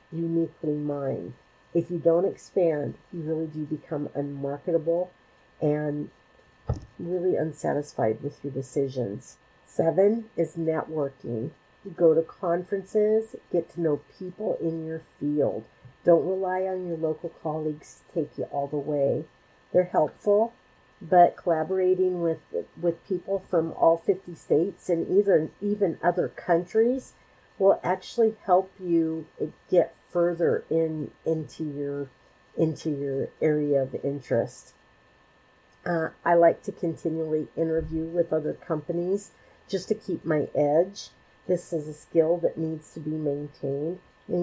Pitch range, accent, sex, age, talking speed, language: 150-180 Hz, American, female, 50-69, 130 wpm, English